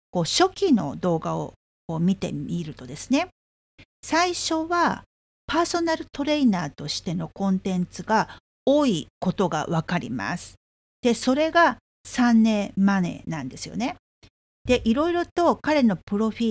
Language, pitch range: Japanese, 170-275 Hz